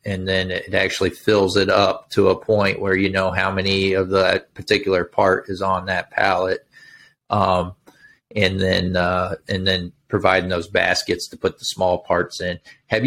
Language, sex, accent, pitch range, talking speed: English, male, American, 95-120 Hz, 180 wpm